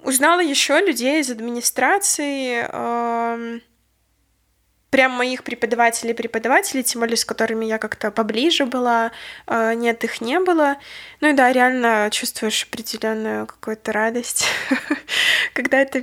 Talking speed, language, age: 125 wpm, Russian, 20-39